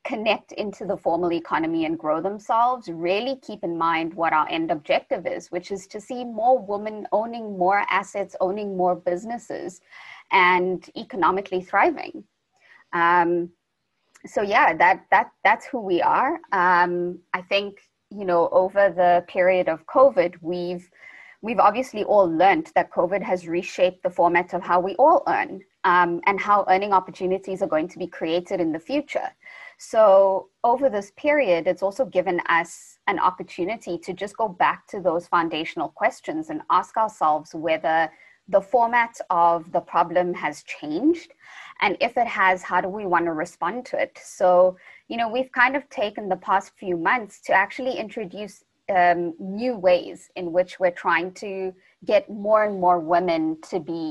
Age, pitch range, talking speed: 20-39, 175-230 Hz, 165 wpm